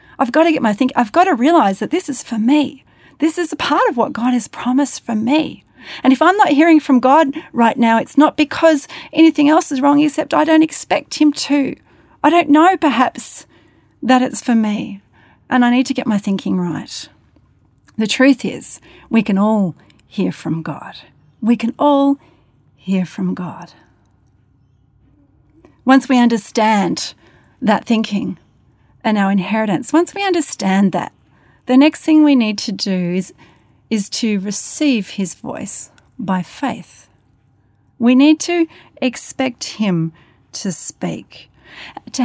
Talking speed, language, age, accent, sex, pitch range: 160 wpm, English, 40-59, Australian, female, 190-285 Hz